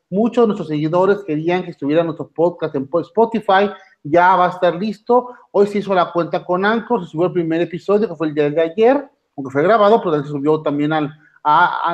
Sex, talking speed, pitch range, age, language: male, 220 wpm, 165-210 Hz, 40-59, Spanish